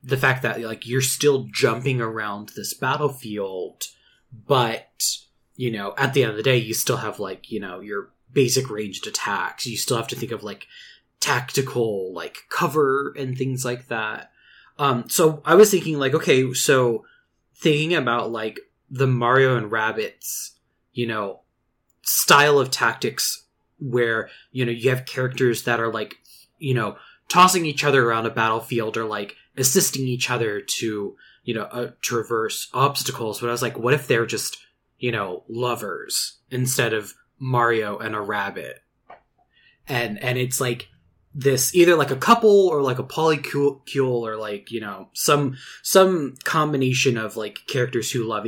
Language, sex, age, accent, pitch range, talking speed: English, male, 20-39, American, 115-135 Hz, 165 wpm